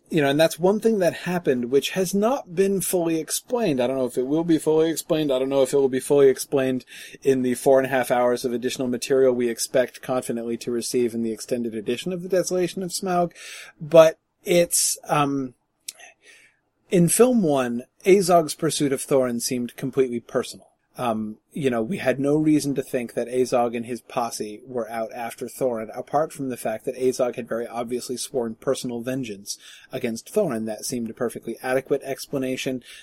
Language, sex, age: English, male, 30-49